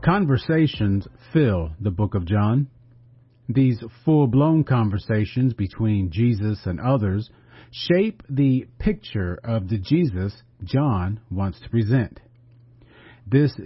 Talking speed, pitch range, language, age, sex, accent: 105 wpm, 110-135 Hz, English, 40-59, male, American